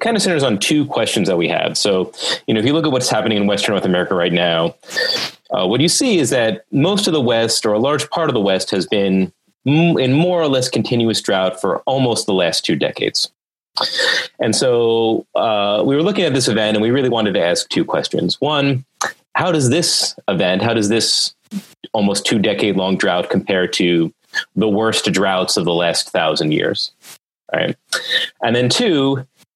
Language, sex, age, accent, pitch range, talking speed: English, male, 30-49, American, 100-135 Hz, 205 wpm